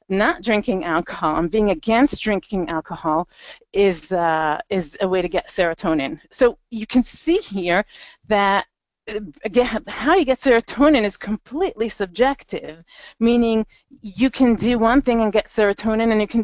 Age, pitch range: 40-59, 185-235 Hz